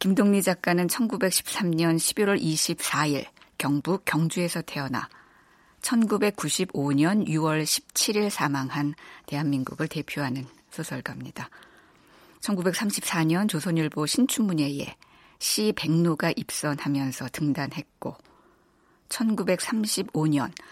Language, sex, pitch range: Korean, female, 150-195 Hz